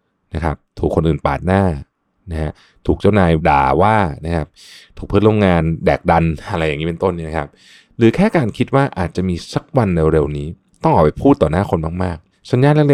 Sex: male